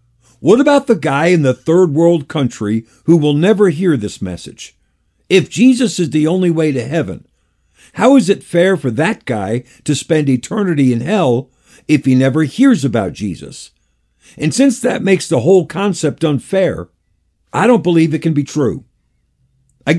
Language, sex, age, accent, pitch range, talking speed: English, male, 50-69, American, 125-175 Hz, 170 wpm